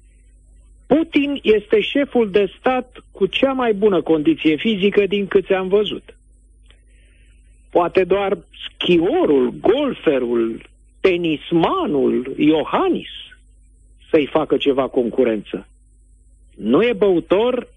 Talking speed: 95 wpm